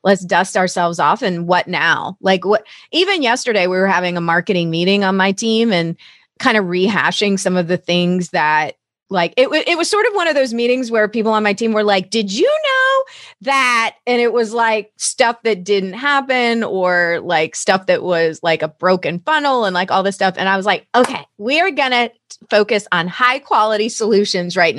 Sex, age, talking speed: female, 30-49, 210 wpm